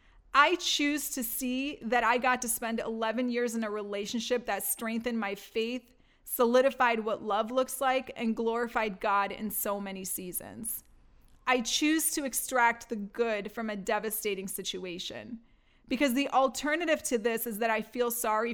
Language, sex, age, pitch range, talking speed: English, female, 30-49, 210-255 Hz, 160 wpm